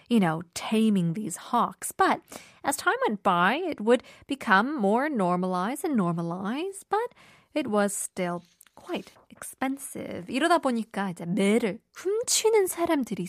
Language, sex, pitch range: Korean, female, 195-300 Hz